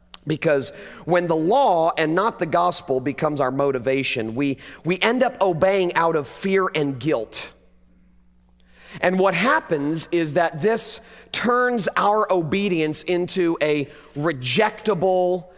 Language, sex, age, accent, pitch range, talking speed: English, male, 40-59, American, 125-175 Hz, 125 wpm